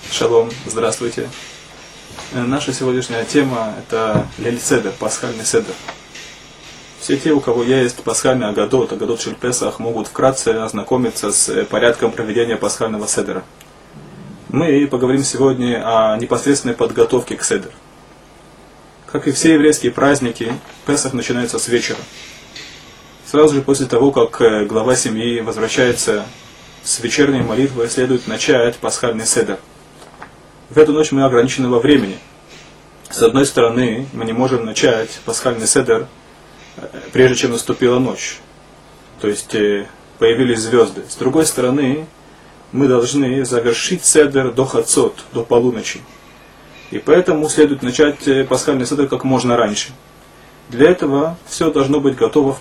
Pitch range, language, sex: 120-140 Hz, Russian, male